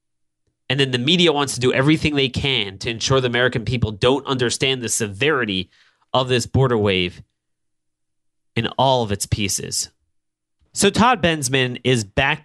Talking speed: 160 wpm